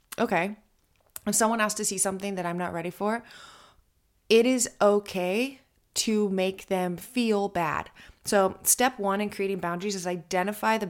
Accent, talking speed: American, 160 wpm